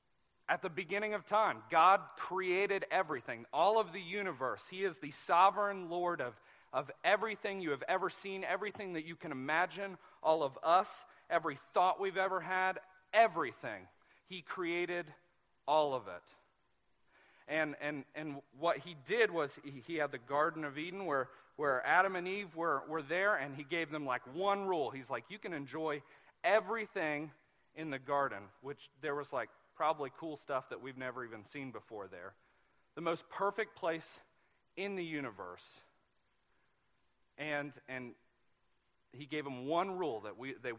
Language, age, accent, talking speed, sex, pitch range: English, 40-59, American, 165 wpm, male, 145-190 Hz